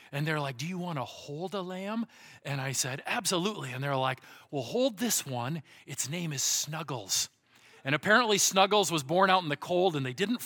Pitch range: 145-210 Hz